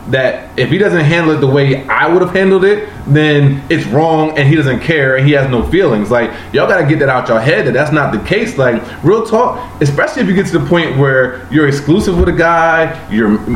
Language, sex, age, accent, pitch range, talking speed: English, male, 20-39, American, 130-175 Hz, 250 wpm